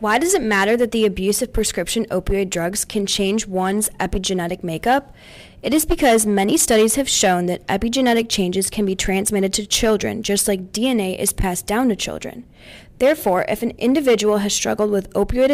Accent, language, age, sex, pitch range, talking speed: American, English, 20-39, female, 195-230 Hz, 180 wpm